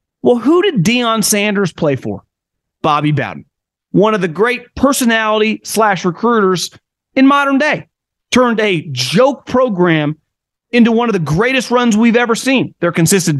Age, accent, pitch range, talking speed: 30-49, American, 150-220 Hz, 150 wpm